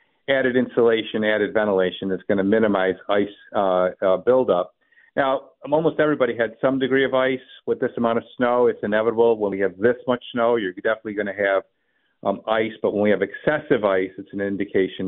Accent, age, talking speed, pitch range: American, 50-69, 195 wpm, 100-125 Hz